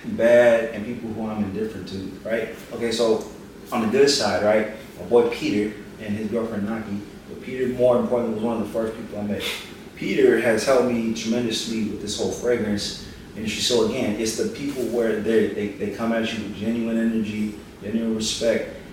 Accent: American